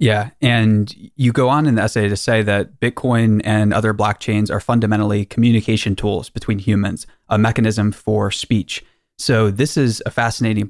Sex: male